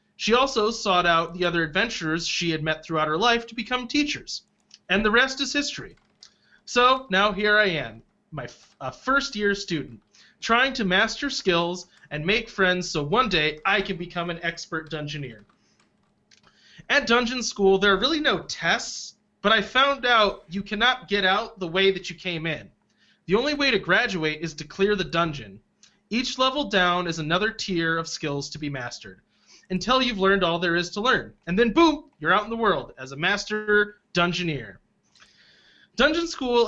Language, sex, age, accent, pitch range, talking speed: English, male, 30-49, American, 165-225 Hz, 180 wpm